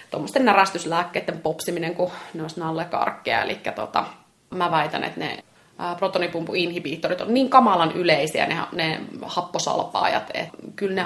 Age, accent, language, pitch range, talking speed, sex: 30-49, native, Finnish, 165-190 Hz, 130 wpm, female